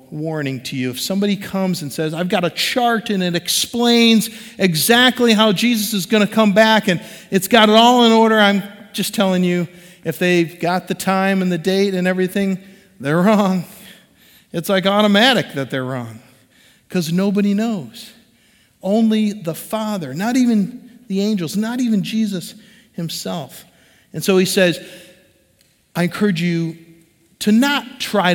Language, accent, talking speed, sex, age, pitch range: English, American, 160 wpm, male, 50-69, 160-215 Hz